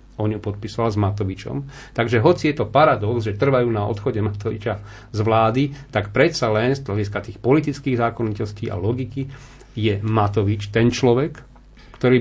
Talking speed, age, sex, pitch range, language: 150 wpm, 40-59, male, 105-120 Hz, Slovak